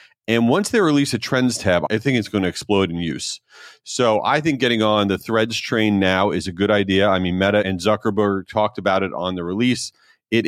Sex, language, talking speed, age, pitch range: male, English, 230 wpm, 30-49, 100-130 Hz